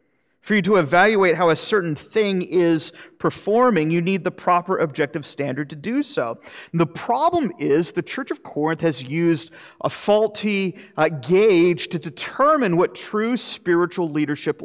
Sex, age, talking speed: male, 40-59, 160 wpm